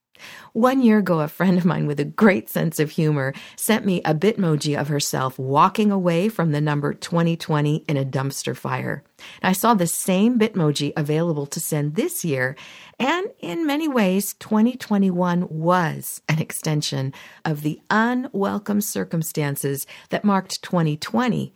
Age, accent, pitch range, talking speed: 50-69, American, 155-225 Hz, 150 wpm